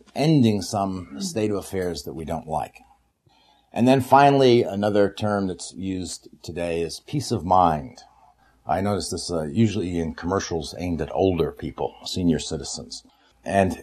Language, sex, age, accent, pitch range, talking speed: English, male, 50-69, American, 85-110 Hz, 150 wpm